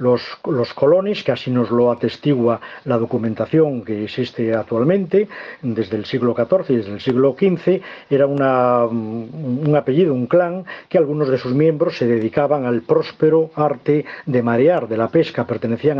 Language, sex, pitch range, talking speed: Spanish, male, 120-165 Hz, 160 wpm